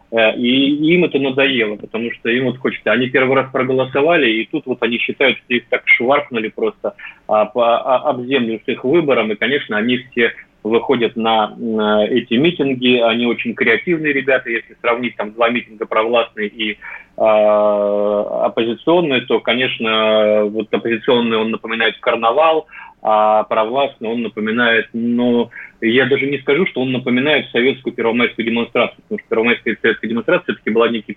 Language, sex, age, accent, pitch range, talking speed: Russian, male, 20-39, native, 115-135 Hz, 160 wpm